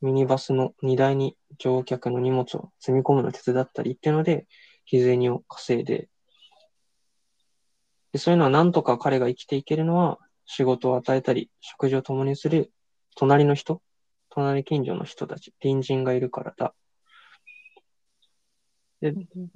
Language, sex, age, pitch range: Japanese, male, 20-39, 130-170 Hz